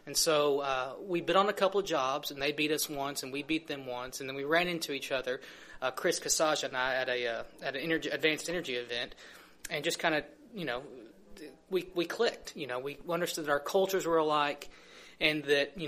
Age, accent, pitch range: 30-49, American, 140-170 Hz